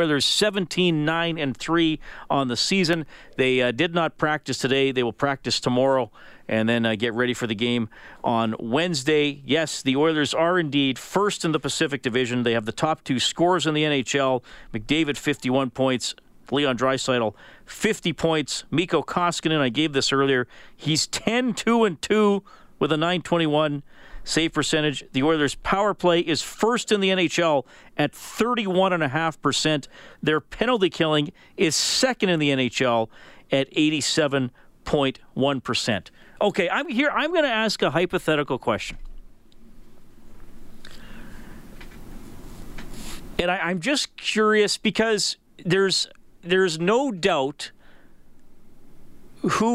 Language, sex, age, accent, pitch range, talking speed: English, male, 40-59, American, 135-180 Hz, 130 wpm